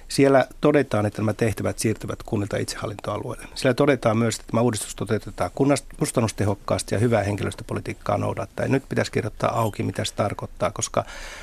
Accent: native